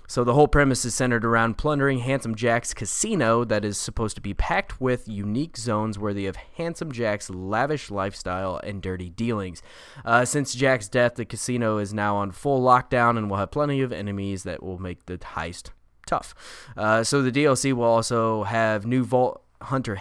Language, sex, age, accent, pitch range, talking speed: English, male, 20-39, American, 100-125 Hz, 185 wpm